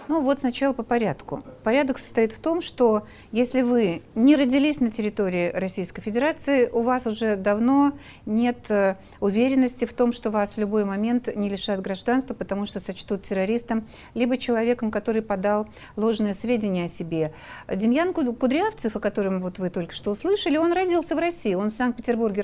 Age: 60-79